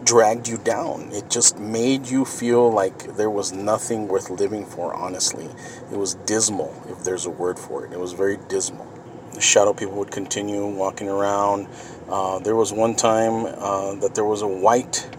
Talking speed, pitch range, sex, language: 185 wpm, 105-140 Hz, male, English